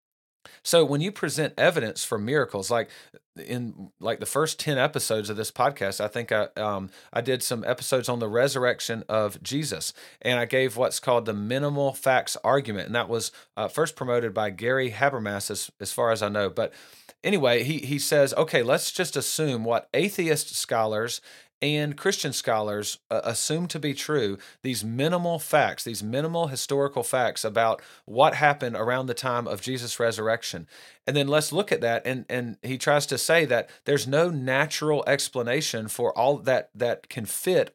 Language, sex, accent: English, male, American